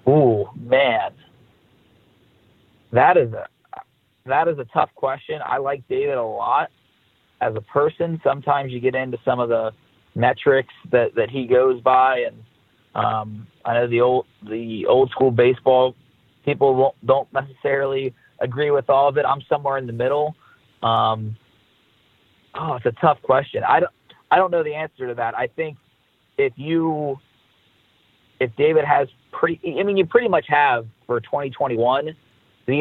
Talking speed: 160 wpm